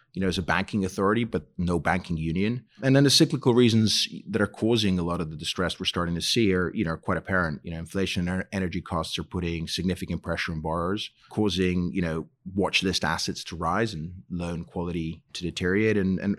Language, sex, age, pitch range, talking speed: English, male, 30-49, 90-105 Hz, 215 wpm